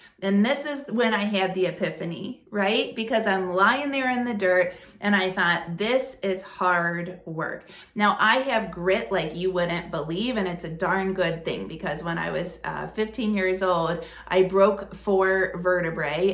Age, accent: 30-49, American